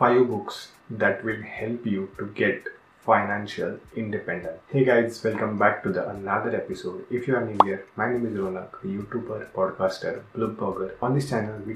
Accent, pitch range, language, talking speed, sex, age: Indian, 100-120 Hz, English, 175 wpm, male, 30-49